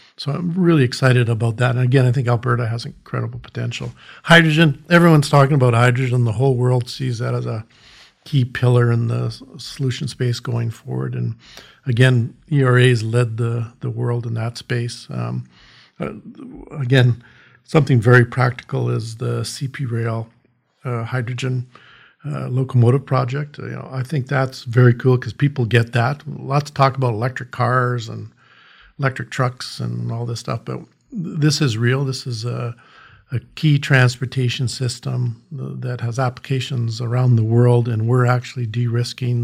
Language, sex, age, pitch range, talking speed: English, male, 50-69, 115-130 Hz, 160 wpm